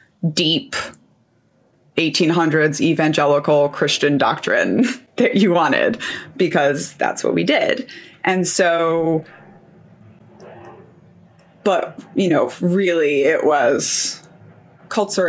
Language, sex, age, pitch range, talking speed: English, female, 20-39, 155-185 Hz, 85 wpm